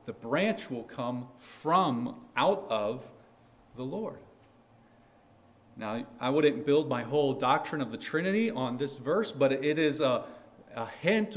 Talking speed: 150 wpm